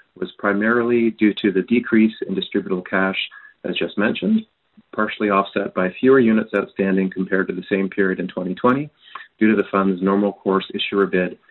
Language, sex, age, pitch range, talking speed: English, male, 30-49, 95-110 Hz, 170 wpm